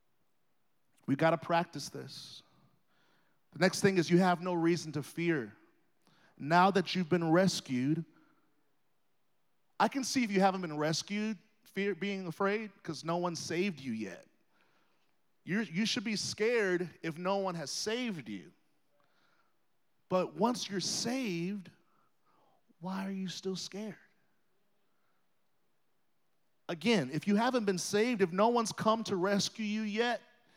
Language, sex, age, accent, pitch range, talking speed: English, male, 40-59, American, 180-215 Hz, 135 wpm